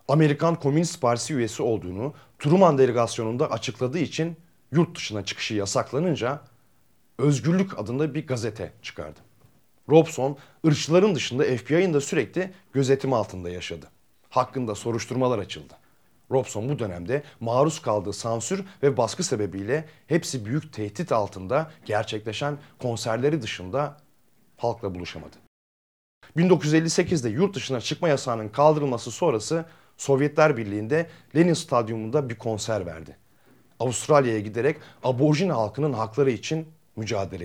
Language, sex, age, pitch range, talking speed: Turkish, male, 40-59, 110-150 Hz, 110 wpm